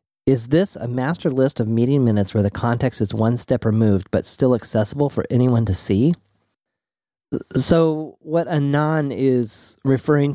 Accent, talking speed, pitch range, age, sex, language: American, 155 wpm, 100-135 Hz, 30-49, male, English